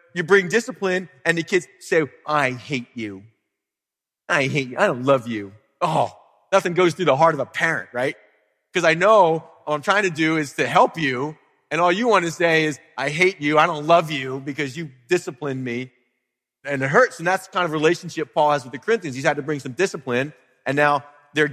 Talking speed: 225 wpm